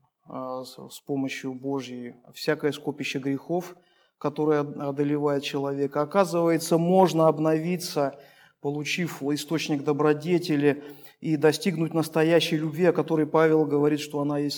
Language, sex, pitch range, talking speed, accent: Russian, male, 140-160 Hz, 105 wpm, native